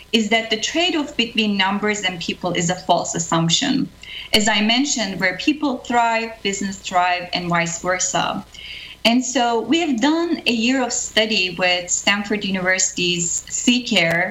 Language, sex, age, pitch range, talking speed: English, female, 30-49, 185-240 Hz, 150 wpm